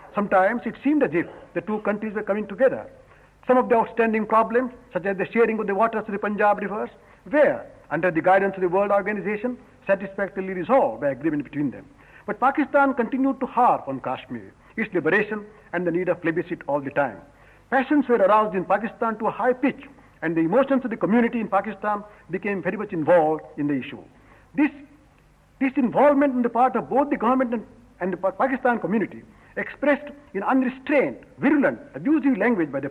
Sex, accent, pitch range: male, Indian, 190-265 Hz